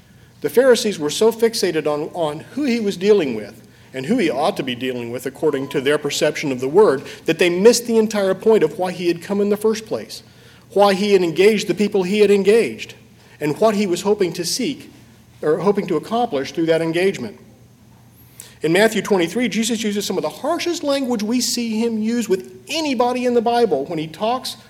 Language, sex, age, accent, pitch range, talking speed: English, male, 50-69, American, 170-235 Hz, 210 wpm